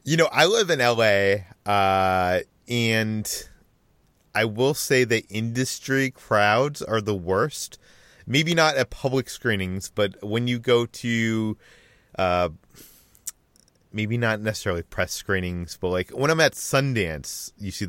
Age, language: 30-49, English